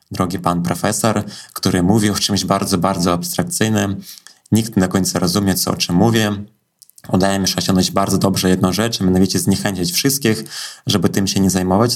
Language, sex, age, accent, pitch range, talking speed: Polish, male, 20-39, native, 95-115 Hz, 180 wpm